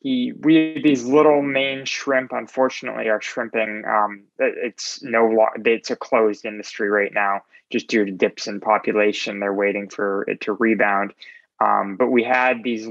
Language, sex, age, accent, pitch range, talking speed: English, male, 20-39, American, 105-130 Hz, 165 wpm